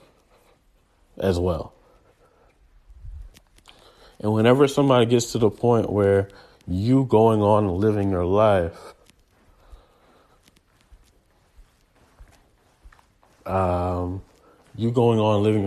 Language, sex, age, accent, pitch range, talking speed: English, male, 30-49, American, 90-115 Hz, 80 wpm